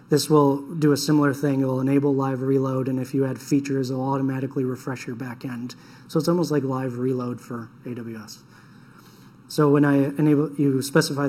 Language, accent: English, American